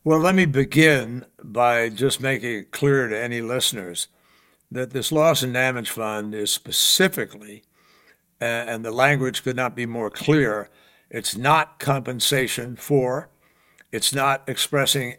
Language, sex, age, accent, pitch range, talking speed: English, male, 60-79, American, 120-145 Hz, 140 wpm